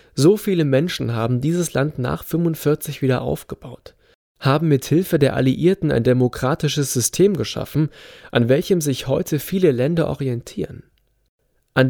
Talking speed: 130 wpm